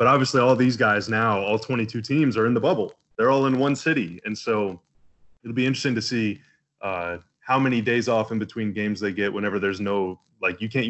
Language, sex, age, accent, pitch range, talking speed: English, male, 20-39, American, 100-115 Hz, 230 wpm